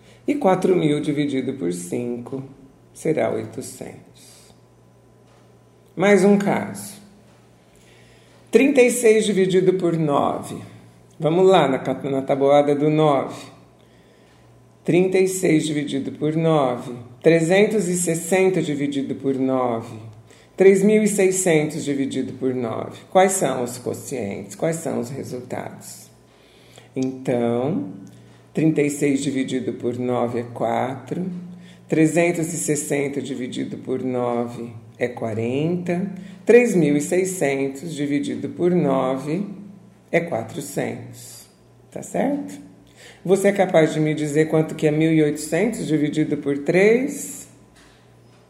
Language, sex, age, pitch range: Portuguese, male, 50-69, 130-175 Hz